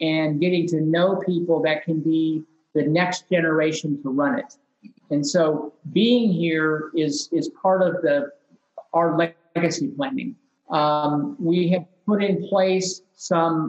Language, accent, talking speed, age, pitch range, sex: English, American, 140 wpm, 50-69, 155-190 Hz, male